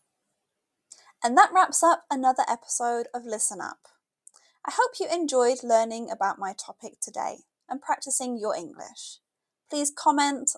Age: 10-29